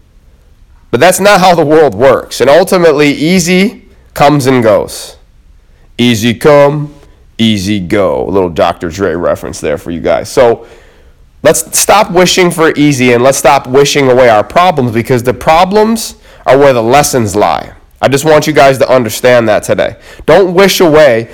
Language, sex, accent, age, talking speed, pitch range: English, male, American, 30-49, 165 wpm, 110-160 Hz